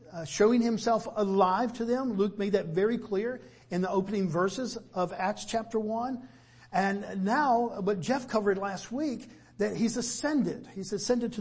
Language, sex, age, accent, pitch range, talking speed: English, male, 50-69, American, 185-245 Hz, 170 wpm